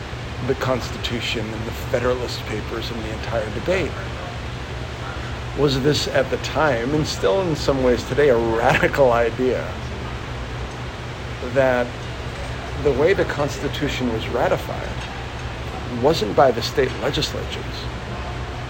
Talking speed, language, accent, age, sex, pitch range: 115 wpm, English, American, 50-69, male, 115-145 Hz